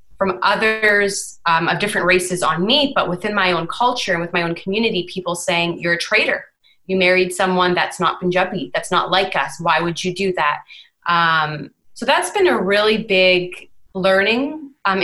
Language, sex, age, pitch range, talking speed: English, female, 20-39, 175-200 Hz, 190 wpm